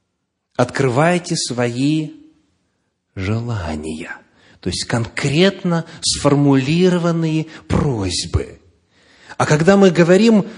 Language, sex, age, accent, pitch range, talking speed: Russian, male, 30-49, native, 105-160 Hz, 70 wpm